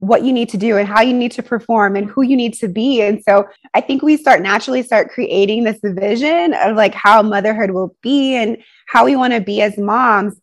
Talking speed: 240 wpm